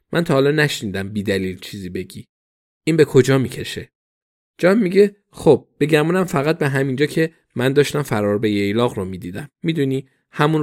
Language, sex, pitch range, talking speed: Persian, male, 105-140 Hz, 165 wpm